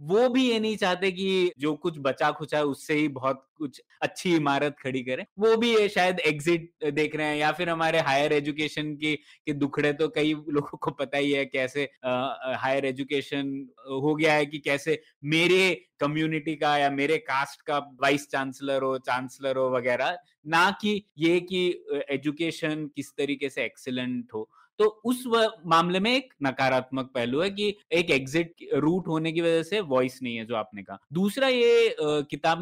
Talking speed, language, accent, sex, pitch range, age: 180 wpm, Hindi, native, male, 140-195 Hz, 20-39